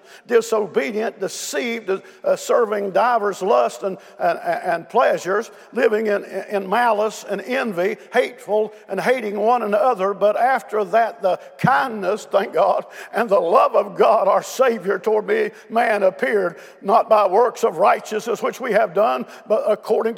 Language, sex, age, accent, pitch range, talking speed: English, male, 50-69, American, 200-245 Hz, 150 wpm